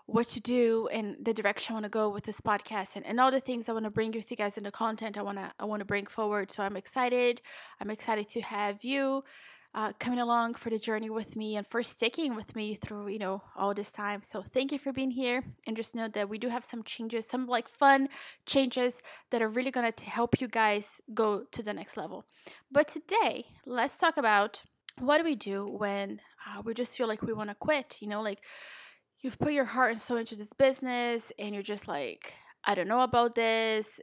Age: 20-39